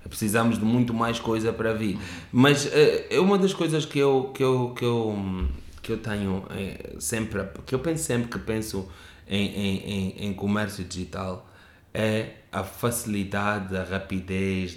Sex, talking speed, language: male, 165 wpm, Portuguese